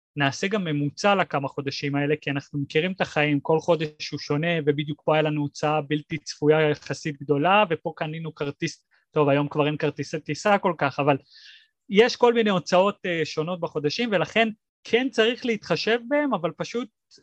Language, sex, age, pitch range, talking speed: Hebrew, male, 30-49, 155-225 Hz, 170 wpm